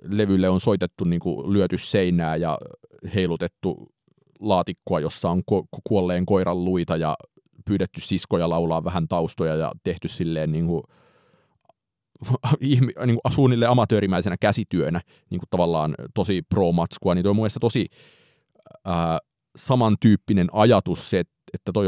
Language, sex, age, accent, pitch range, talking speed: Finnish, male, 30-49, native, 85-105 Hz, 125 wpm